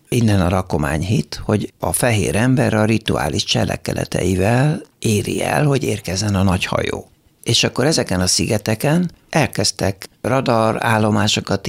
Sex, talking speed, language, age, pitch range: male, 130 wpm, Hungarian, 60-79, 95-120 Hz